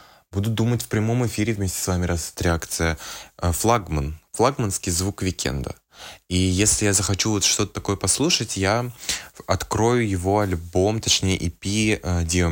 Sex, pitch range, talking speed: male, 80-100 Hz, 140 wpm